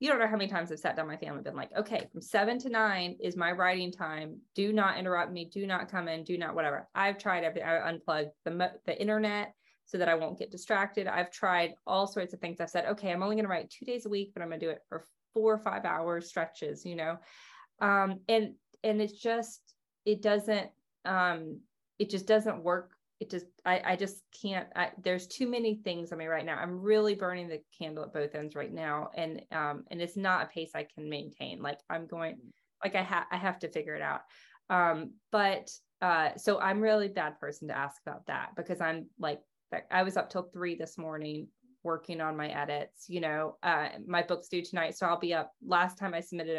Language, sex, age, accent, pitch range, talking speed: English, female, 20-39, American, 165-200 Hz, 230 wpm